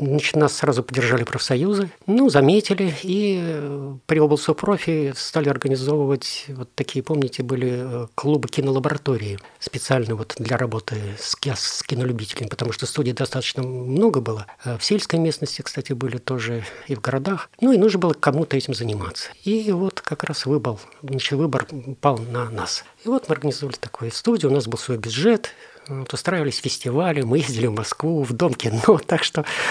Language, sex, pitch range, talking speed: Russian, male, 125-160 Hz, 150 wpm